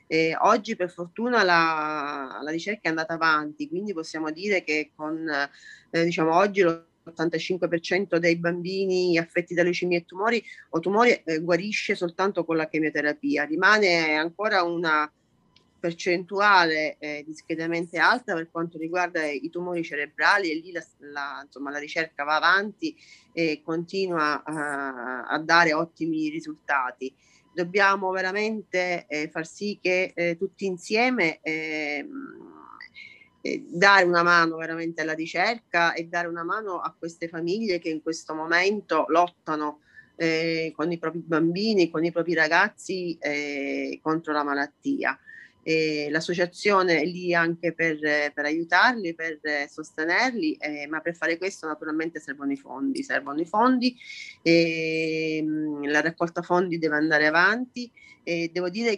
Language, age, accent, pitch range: Italian, 30-49, native, 155-185 Hz